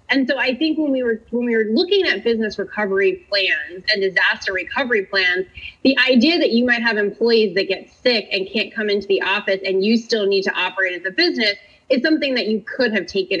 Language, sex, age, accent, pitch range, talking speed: English, female, 20-39, American, 195-250 Hz, 230 wpm